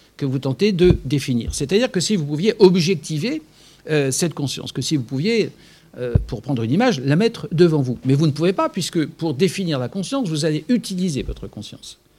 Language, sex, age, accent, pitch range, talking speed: French, male, 60-79, French, 135-205 Hz, 205 wpm